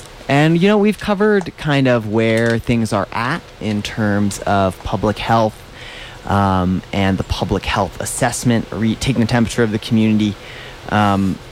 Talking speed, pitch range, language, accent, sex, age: 150 wpm, 100-125 Hz, English, American, male, 20-39